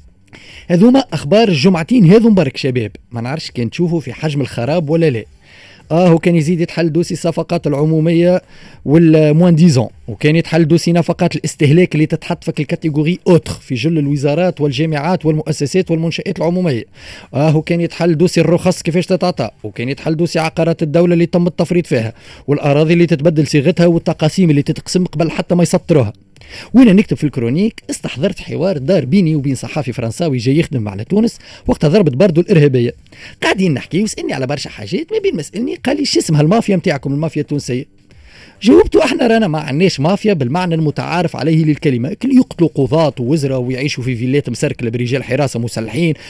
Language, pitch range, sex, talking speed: Arabic, 135-180 Hz, male, 160 wpm